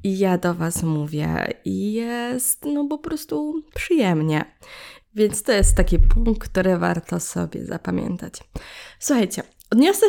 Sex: female